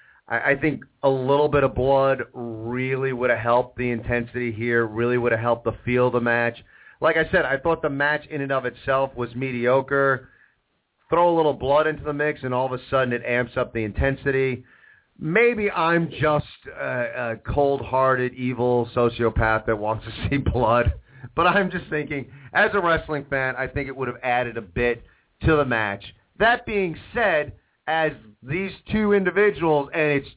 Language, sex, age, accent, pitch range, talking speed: English, male, 40-59, American, 125-155 Hz, 185 wpm